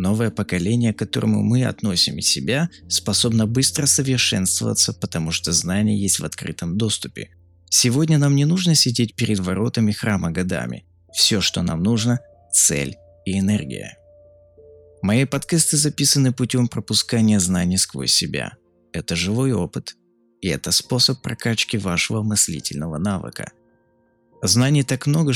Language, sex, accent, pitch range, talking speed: Russian, male, native, 90-120 Hz, 130 wpm